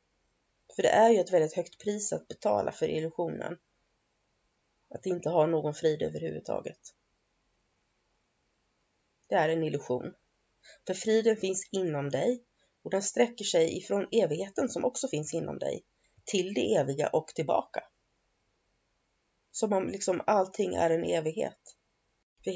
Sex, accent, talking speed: female, native, 135 wpm